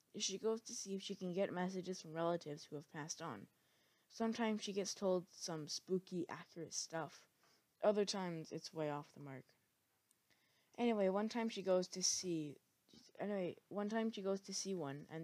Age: 20-39